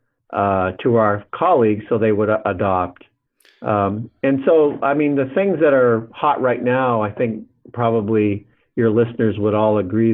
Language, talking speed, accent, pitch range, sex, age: English, 165 wpm, American, 100-115 Hz, male, 50-69